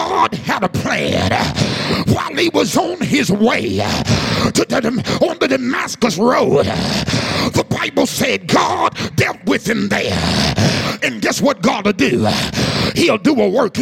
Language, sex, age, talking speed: English, male, 50-69, 150 wpm